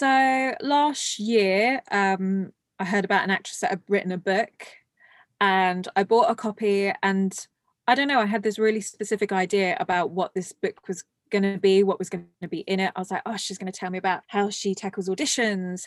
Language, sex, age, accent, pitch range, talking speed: English, female, 20-39, British, 185-220 Hz, 220 wpm